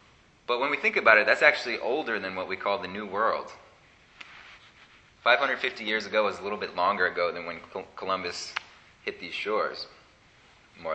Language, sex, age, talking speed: English, male, 30-49, 175 wpm